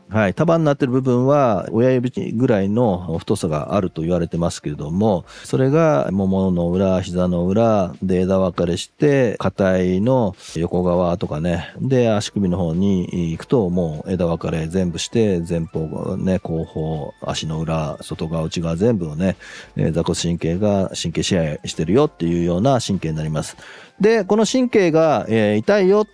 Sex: male